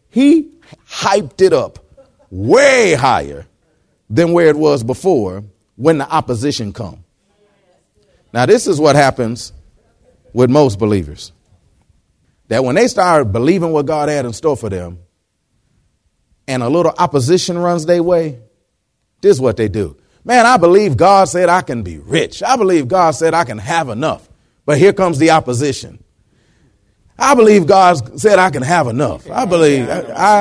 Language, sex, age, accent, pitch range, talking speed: English, male, 40-59, American, 105-165 Hz, 160 wpm